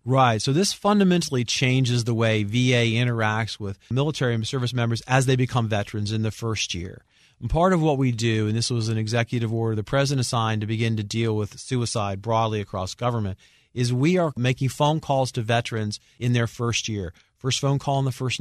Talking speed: 205 wpm